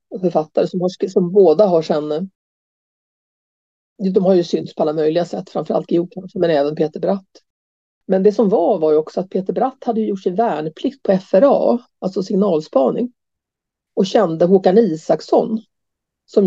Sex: female